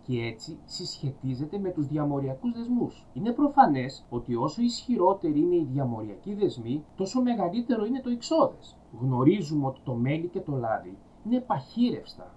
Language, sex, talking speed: Greek, male, 145 wpm